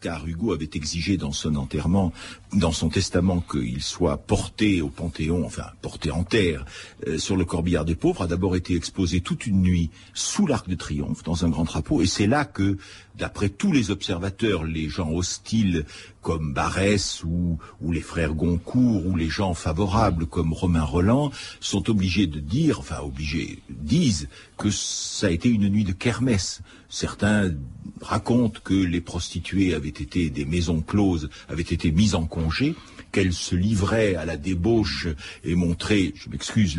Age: 60-79